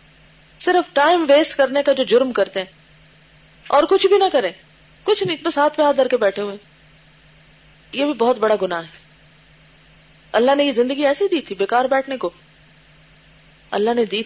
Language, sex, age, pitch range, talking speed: Urdu, female, 30-49, 210-310 Hz, 175 wpm